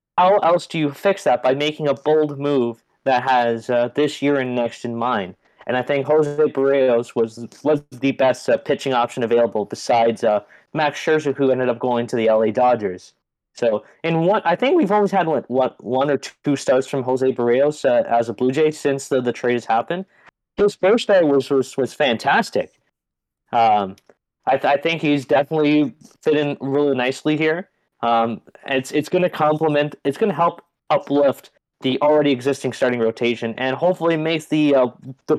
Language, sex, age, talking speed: English, male, 20-39, 195 wpm